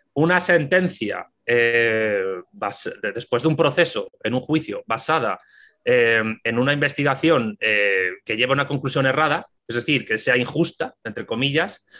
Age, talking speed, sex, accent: 30-49, 145 wpm, male, Spanish